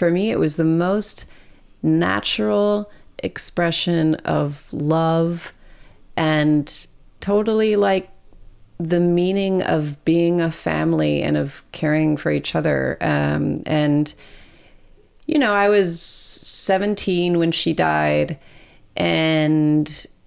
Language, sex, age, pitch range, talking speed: English, female, 30-49, 150-185 Hz, 105 wpm